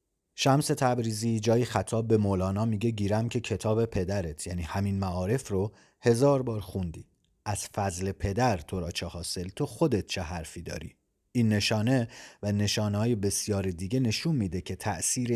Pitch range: 95-120 Hz